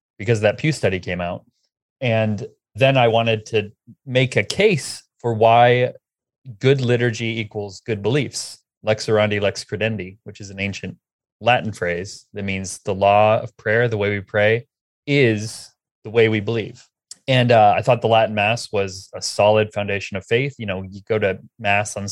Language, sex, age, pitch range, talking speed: English, male, 30-49, 100-120 Hz, 180 wpm